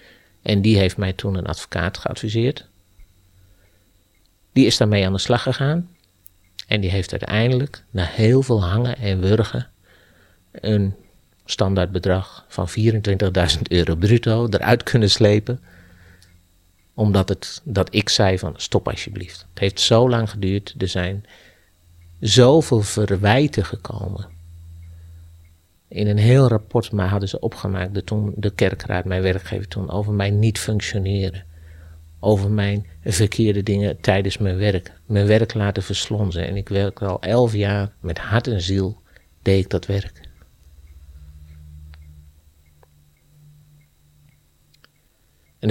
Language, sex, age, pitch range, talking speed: Dutch, male, 50-69, 90-110 Hz, 130 wpm